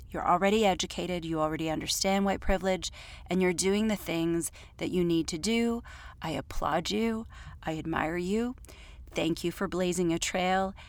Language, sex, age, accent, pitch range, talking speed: English, female, 30-49, American, 165-200 Hz, 165 wpm